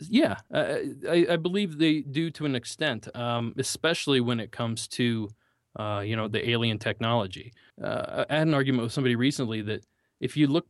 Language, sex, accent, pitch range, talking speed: English, male, American, 105-130 Hz, 185 wpm